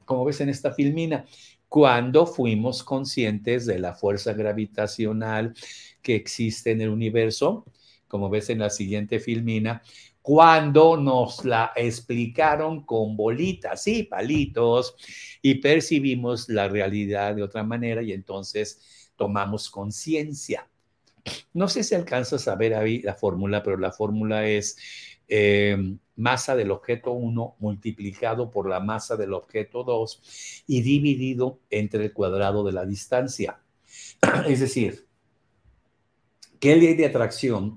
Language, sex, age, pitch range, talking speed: Spanish, male, 50-69, 105-130 Hz, 130 wpm